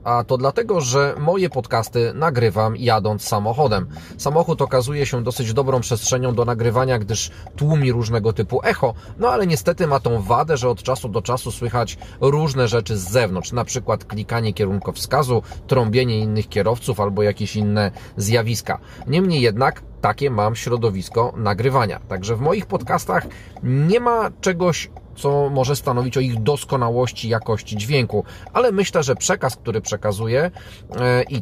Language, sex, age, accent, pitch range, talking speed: Polish, male, 30-49, native, 110-130 Hz, 145 wpm